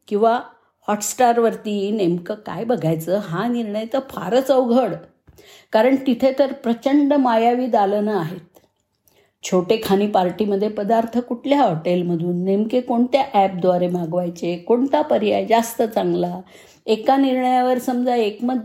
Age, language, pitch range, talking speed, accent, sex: 50-69, Marathi, 200-255 Hz, 115 wpm, native, female